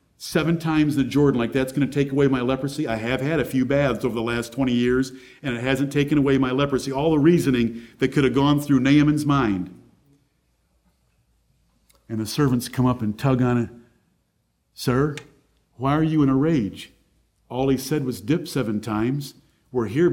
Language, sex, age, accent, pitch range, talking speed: English, male, 50-69, American, 130-200 Hz, 195 wpm